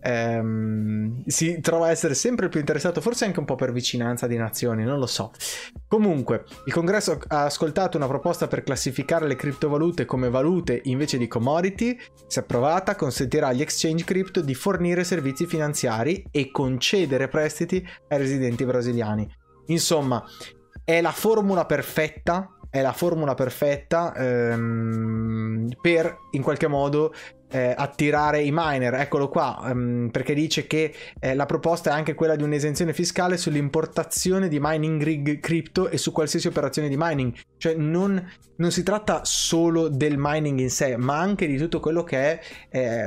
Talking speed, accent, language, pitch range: 155 wpm, native, Italian, 125-165 Hz